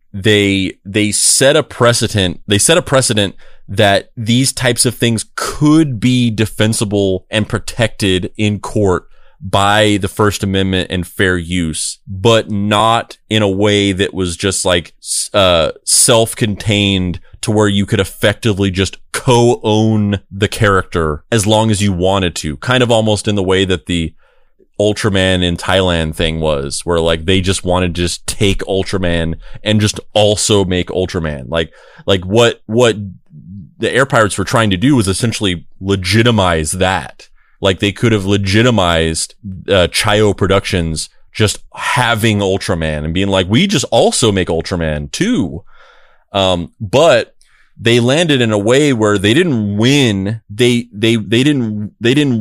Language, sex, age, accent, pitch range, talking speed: English, male, 20-39, American, 95-115 Hz, 150 wpm